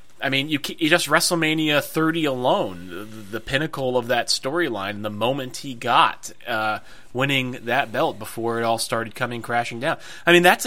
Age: 30-49